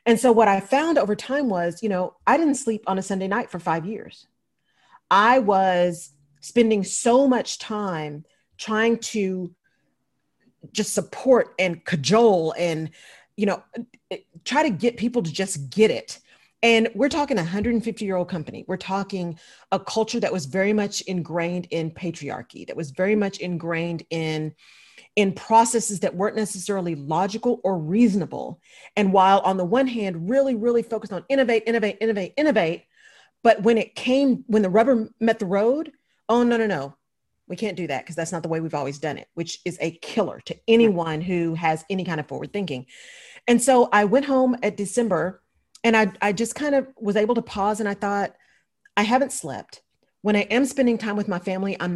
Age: 40-59